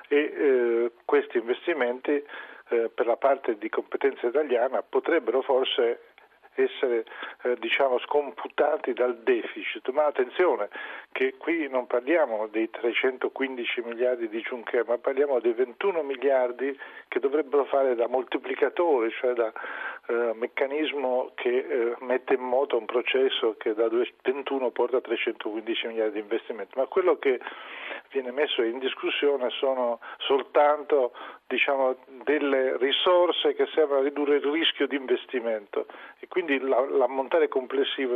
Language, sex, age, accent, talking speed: Italian, male, 40-59, native, 130 wpm